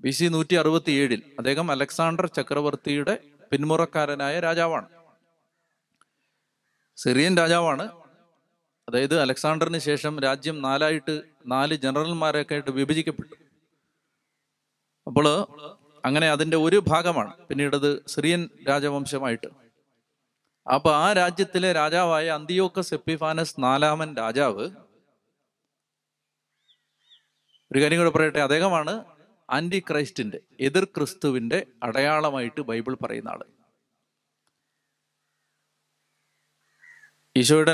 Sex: male